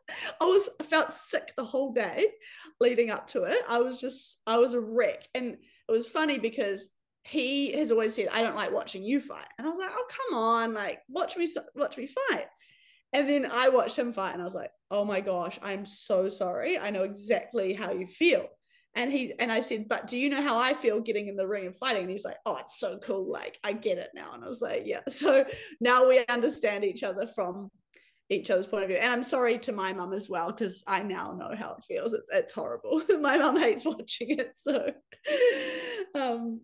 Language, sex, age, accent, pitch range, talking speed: English, female, 20-39, Australian, 200-305 Hz, 230 wpm